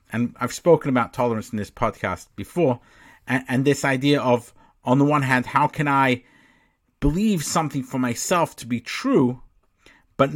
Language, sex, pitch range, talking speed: English, male, 115-145 Hz, 170 wpm